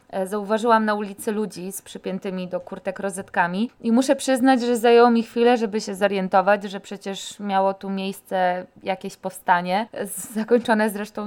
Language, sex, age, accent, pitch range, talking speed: Polish, female, 20-39, native, 185-225 Hz, 150 wpm